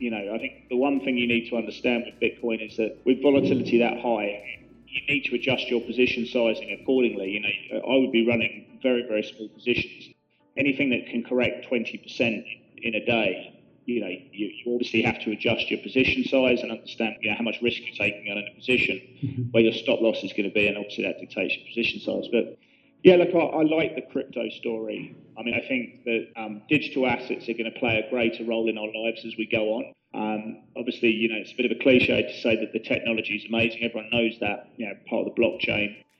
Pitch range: 110-125 Hz